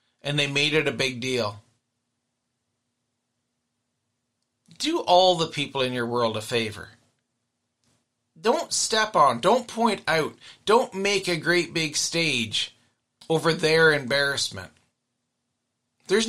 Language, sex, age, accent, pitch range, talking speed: English, male, 40-59, American, 120-190 Hz, 120 wpm